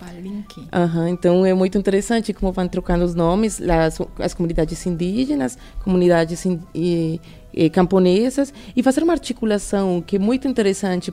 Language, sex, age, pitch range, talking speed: Portuguese, female, 30-49, 175-215 Hz, 125 wpm